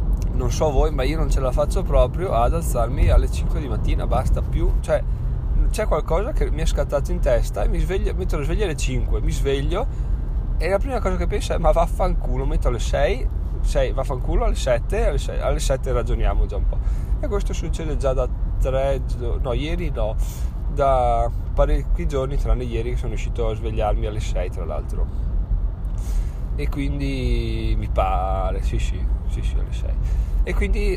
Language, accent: Italian, native